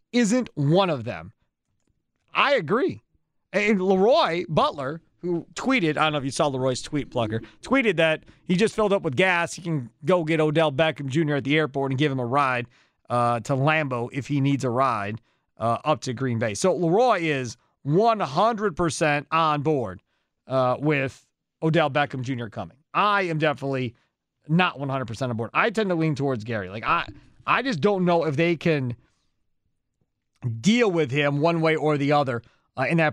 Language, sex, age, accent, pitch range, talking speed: English, male, 40-59, American, 135-175 Hz, 185 wpm